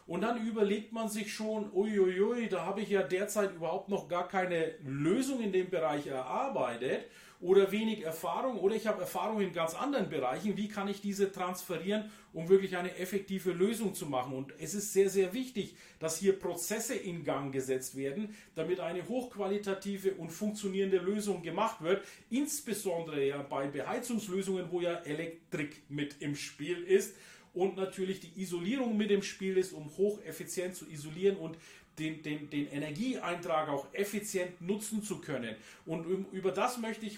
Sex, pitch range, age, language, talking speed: male, 165-205 Hz, 40-59, German, 165 wpm